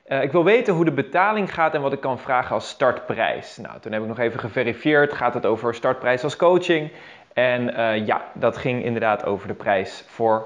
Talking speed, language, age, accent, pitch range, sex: 210 wpm, Dutch, 20-39, Dutch, 135-180 Hz, male